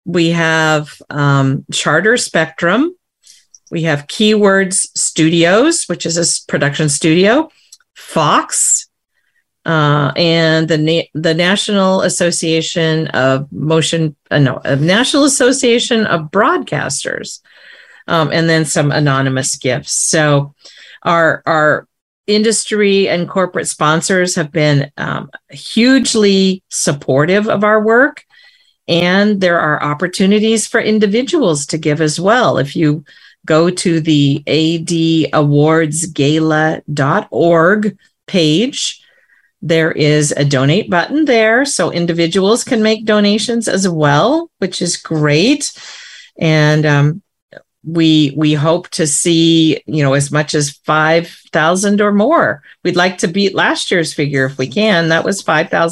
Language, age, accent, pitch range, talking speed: English, 40-59, American, 155-205 Hz, 120 wpm